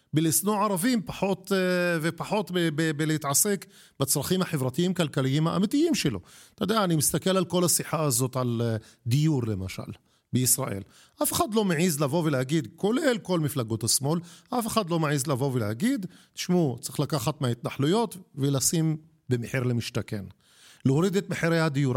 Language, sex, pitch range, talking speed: Hebrew, male, 135-185 Hz, 135 wpm